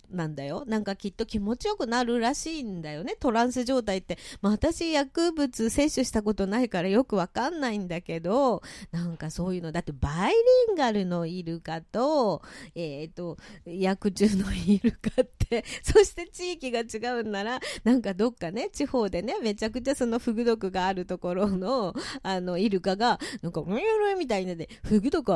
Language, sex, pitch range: Japanese, female, 200-295 Hz